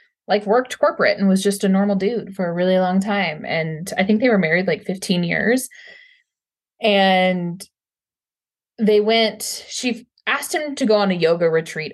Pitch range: 160-210 Hz